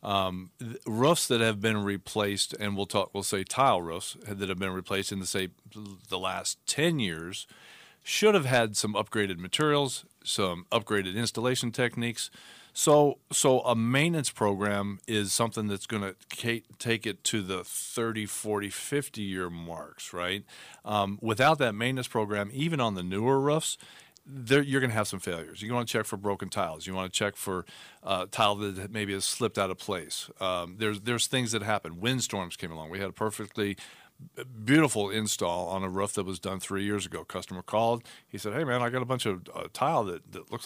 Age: 40-59